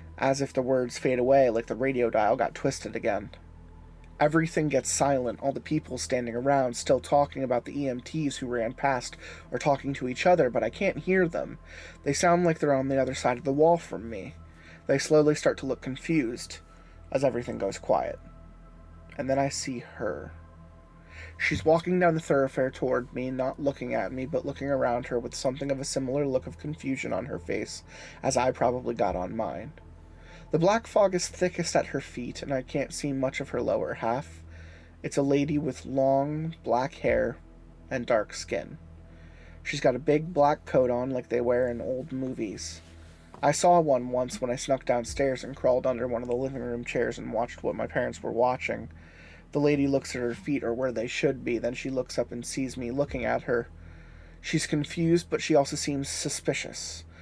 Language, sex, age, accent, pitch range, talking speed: English, male, 30-49, American, 100-145 Hz, 200 wpm